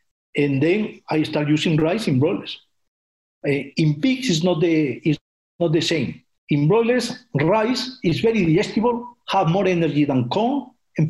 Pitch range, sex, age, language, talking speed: 150-195 Hz, male, 50-69, English, 150 wpm